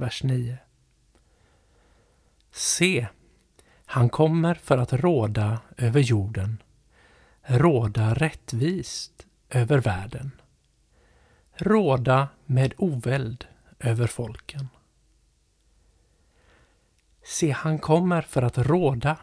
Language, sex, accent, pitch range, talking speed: Swedish, male, native, 110-140 Hz, 80 wpm